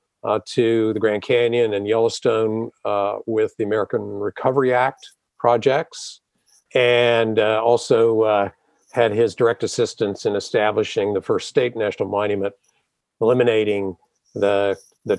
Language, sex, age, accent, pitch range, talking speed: English, male, 50-69, American, 105-130 Hz, 125 wpm